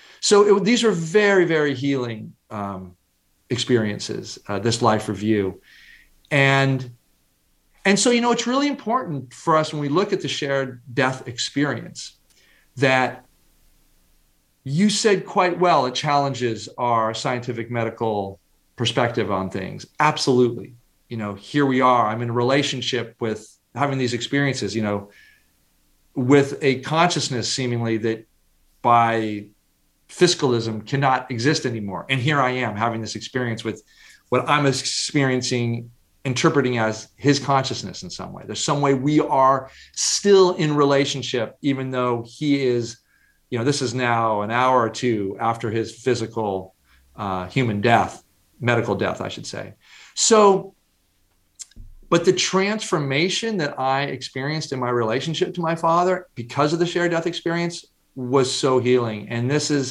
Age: 40-59